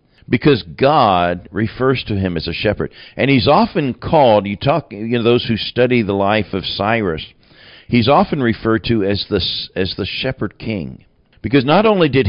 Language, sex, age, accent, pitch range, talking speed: English, male, 50-69, American, 95-125 Hz, 175 wpm